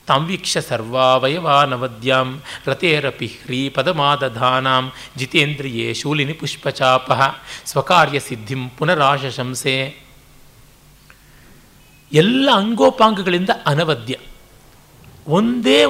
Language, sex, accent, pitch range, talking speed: Kannada, male, native, 130-190 Hz, 65 wpm